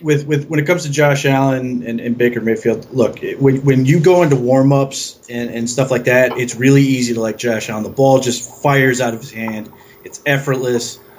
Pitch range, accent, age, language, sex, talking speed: 120-140 Hz, American, 30-49, English, male, 220 wpm